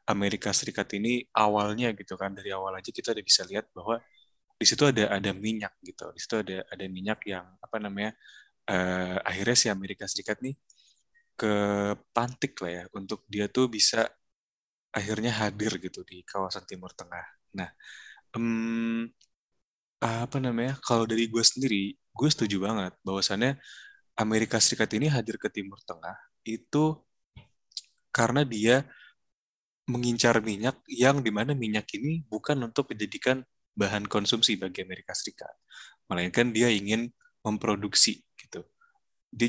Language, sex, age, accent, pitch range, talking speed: Indonesian, male, 20-39, native, 100-120 Hz, 140 wpm